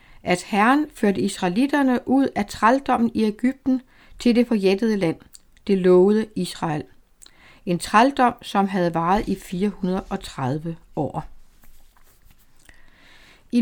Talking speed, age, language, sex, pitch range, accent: 110 wpm, 60-79, Danish, female, 180-250 Hz, native